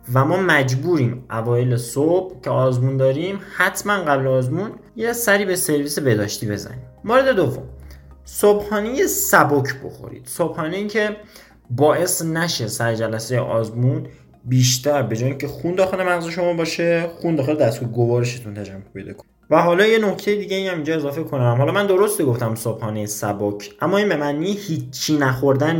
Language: Persian